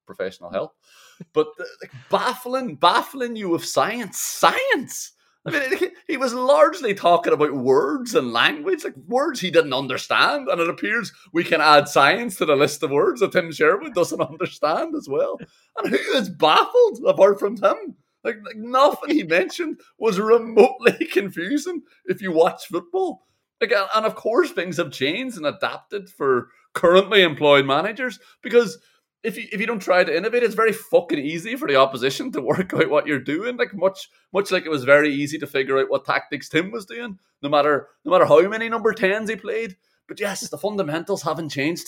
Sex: male